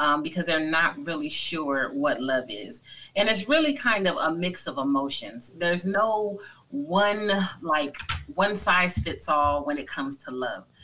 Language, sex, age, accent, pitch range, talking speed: English, female, 30-49, American, 160-205 Hz, 170 wpm